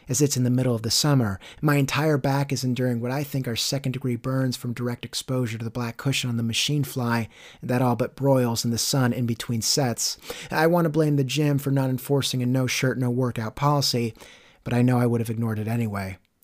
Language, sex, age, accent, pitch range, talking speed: English, male, 30-49, American, 115-145 Hz, 225 wpm